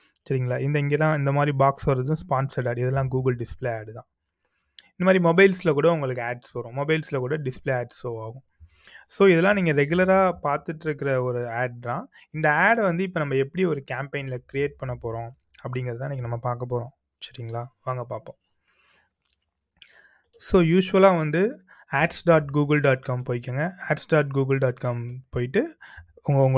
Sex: male